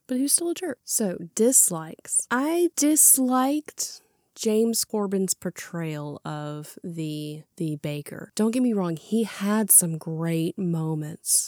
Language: English